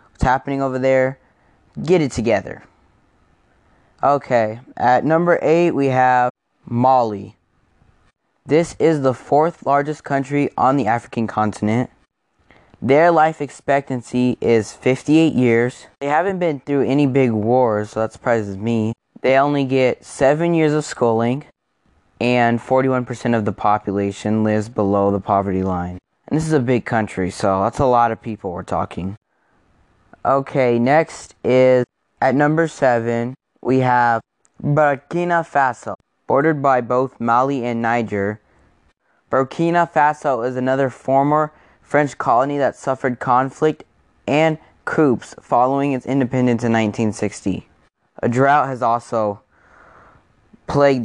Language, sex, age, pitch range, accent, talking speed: English, male, 10-29, 115-140 Hz, American, 130 wpm